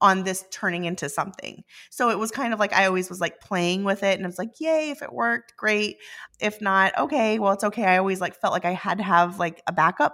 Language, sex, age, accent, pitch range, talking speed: English, female, 30-49, American, 175-220 Hz, 265 wpm